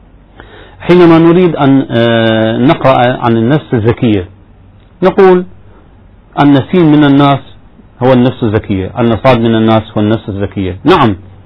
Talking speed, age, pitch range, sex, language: 110 wpm, 40-59, 110-145 Hz, male, Arabic